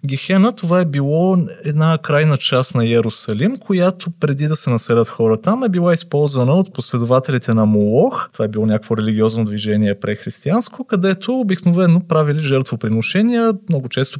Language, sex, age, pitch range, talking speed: Bulgarian, male, 30-49, 115-175 Hz, 150 wpm